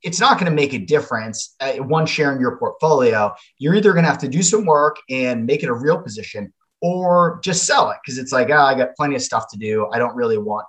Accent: American